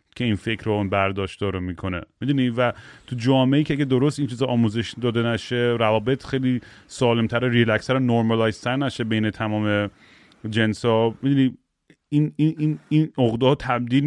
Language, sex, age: Persian, male, 30-49